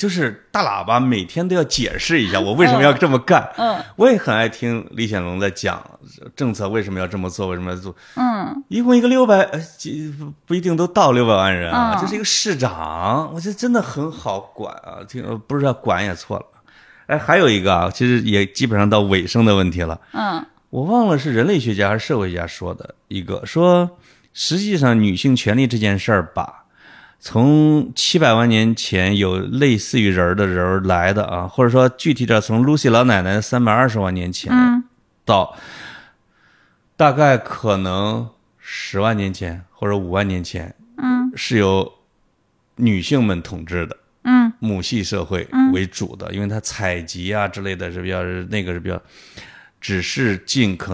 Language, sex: Chinese, male